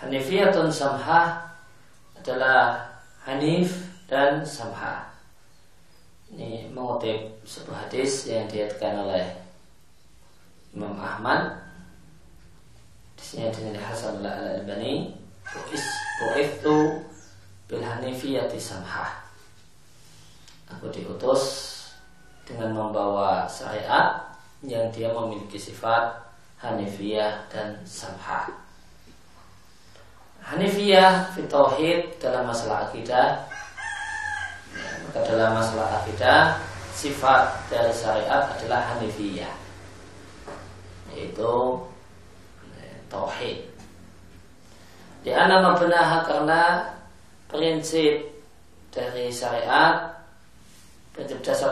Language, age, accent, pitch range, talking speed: Indonesian, 20-39, native, 100-145 Hz, 65 wpm